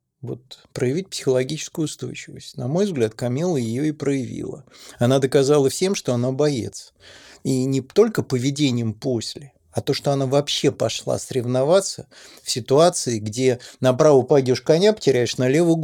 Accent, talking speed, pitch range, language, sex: native, 140 wpm, 125-160 Hz, Russian, male